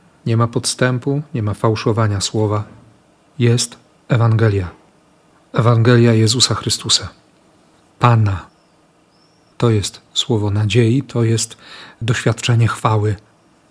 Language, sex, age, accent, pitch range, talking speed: Polish, male, 40-59, native, 115-155 Hz, 90 wpm